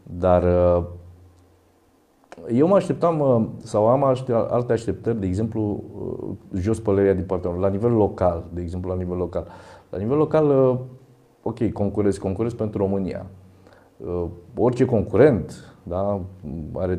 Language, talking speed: Romanian, 120 wpm